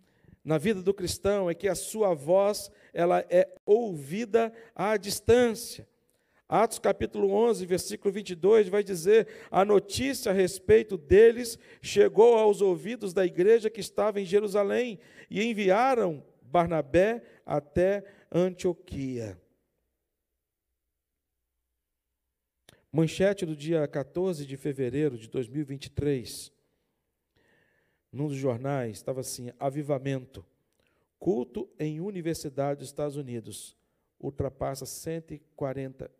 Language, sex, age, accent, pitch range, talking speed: Portuguese, male, 50-69, Brazilian, 130-195 Hz, 100 wpm